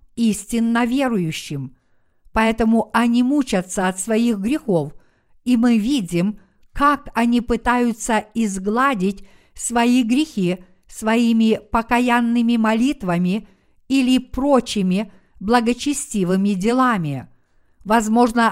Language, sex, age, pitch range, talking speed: Russian, female, 50-69, 200-250 Hz, 80 wpm